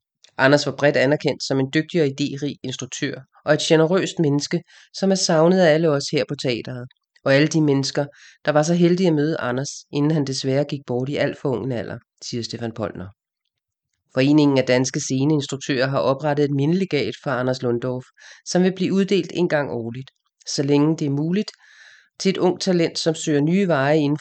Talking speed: 195 wpm